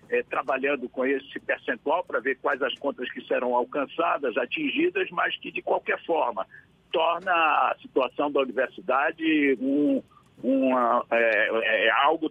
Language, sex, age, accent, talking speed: Portuguese, male, 60-79, Brazilian, 115 wpm